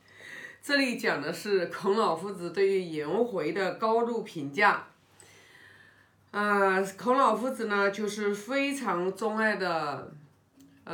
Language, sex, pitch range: Chinese, female, 150-195 Hz